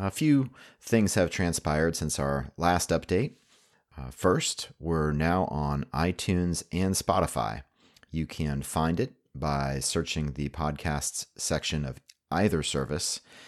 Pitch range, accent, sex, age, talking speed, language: 70-90 Hz, American, male, 40-59, 130 wpm, English